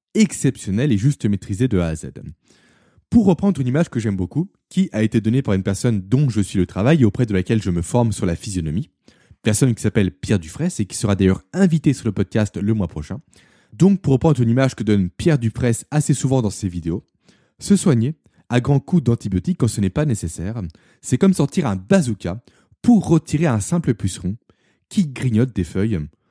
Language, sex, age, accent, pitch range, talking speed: French, male, 20-39, French, 100-150 Hz, 210 wpm